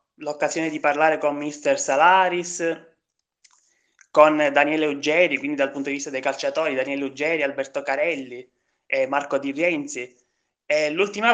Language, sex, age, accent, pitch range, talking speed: Italian, male, 20-39, native, 150-180 Hz, 140 wpm